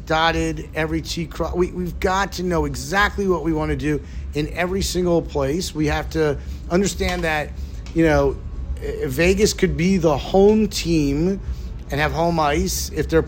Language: English